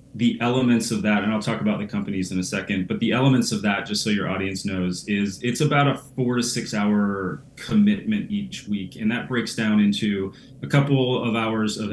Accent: American